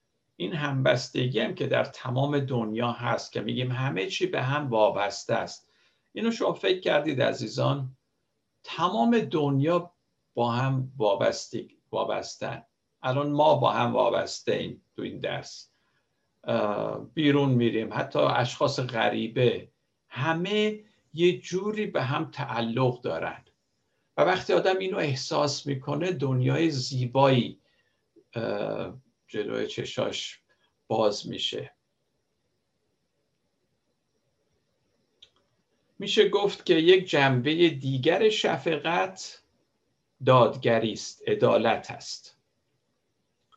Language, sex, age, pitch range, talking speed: Persian, male, 60-79, 130-170 Hz, 90 wpm